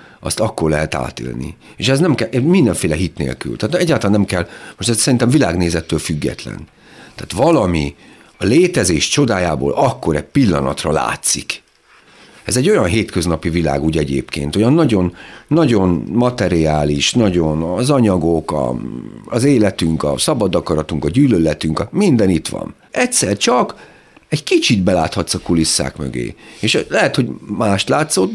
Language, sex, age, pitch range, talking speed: Hungarian, male, 50-69, 80-115 Hz, 145 wpm